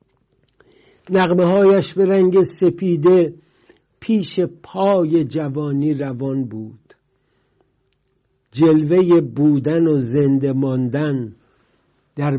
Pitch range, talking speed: 135-165 Hz, 75 wpm